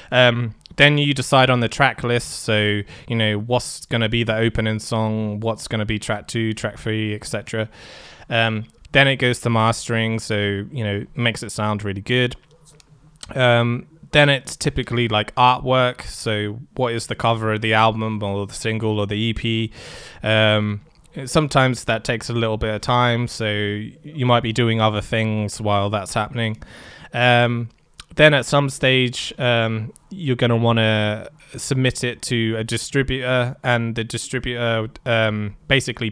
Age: 20-39